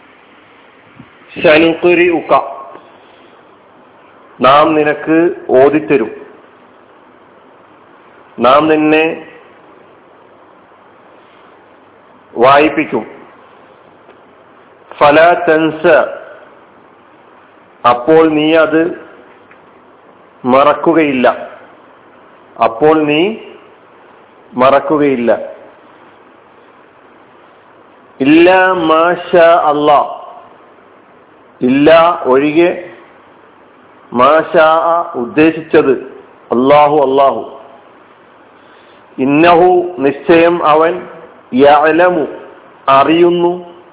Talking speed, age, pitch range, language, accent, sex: 45 wpm, 40-59, 150-175 Hz, Malayalam, native, male